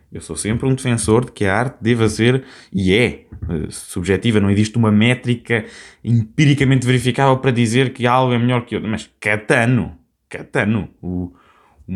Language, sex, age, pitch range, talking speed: Portuguese, male, 20-39, 105-135 Hz, 165 wpm